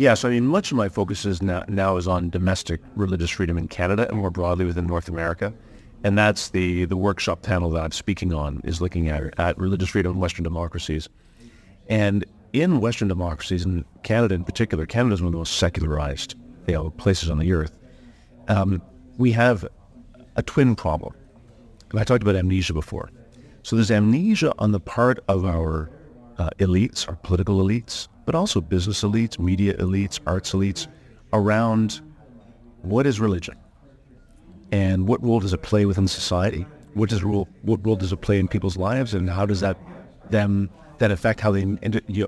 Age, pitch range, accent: 40-59, 90-115 Hz, American